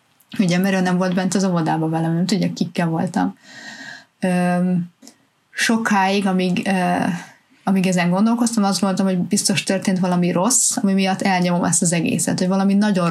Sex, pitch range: female, 185-220 Hz